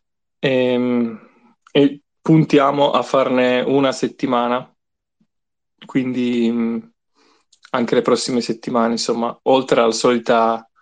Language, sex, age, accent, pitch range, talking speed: Italian, male, 20-39, native, 120-140 Hz, 90 wpm